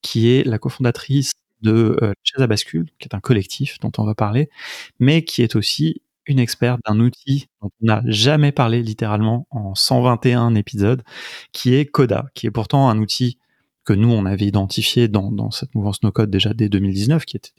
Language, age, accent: French, 30-49, French